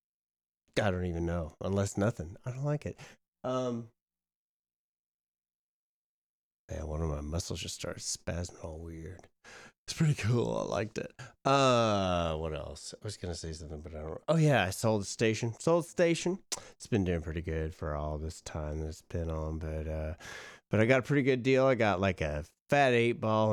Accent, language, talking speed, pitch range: American, English, 190 wpm, 75-115 Hz